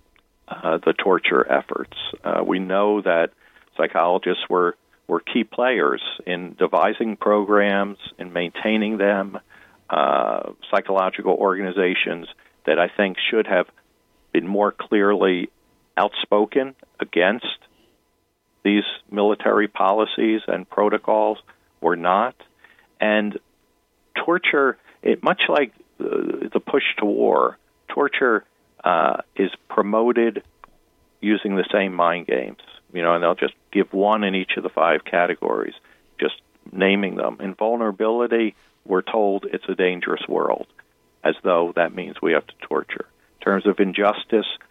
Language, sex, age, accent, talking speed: English, male, 50-69, American, 125 wpm